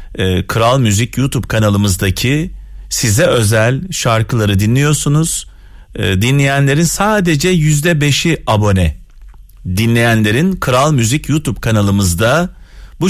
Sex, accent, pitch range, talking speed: male, native, 105-155 Hz, 80 wpm